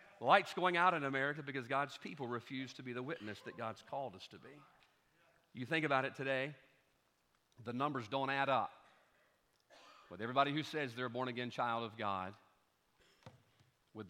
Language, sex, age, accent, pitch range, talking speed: English, male, 50-69, American, 125-200 Hz, 170 wpm